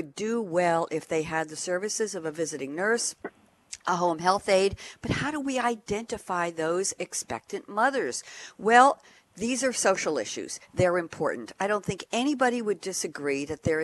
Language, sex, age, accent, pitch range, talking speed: English, female, 50-69, American, 160-215 Hz, 165 wpm